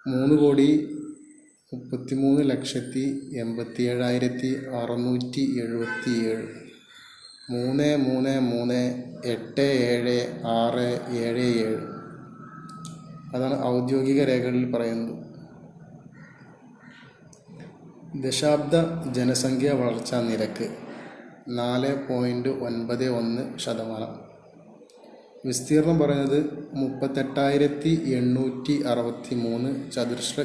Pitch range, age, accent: 120-145 Hz, 30-49, native